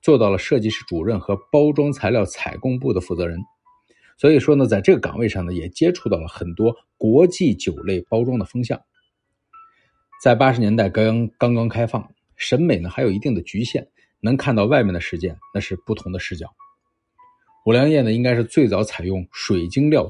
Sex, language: male, Chinese